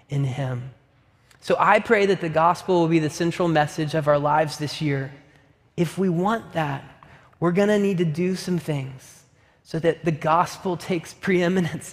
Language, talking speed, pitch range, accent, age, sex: English, 180 wpm, 140-180 Hz, American, 20-39, male